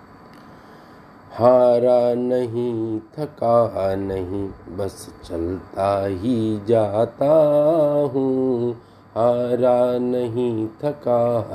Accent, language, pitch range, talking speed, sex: native, Hindi, 105-125 Hz, 60 wpm, male